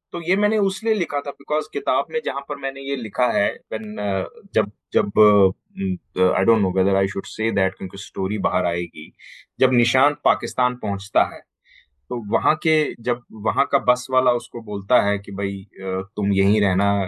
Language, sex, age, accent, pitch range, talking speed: Hindi, male, 30-49, native, 100-155 Hz, 170 wpm